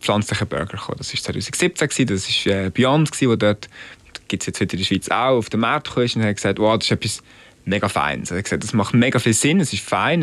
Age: 20-39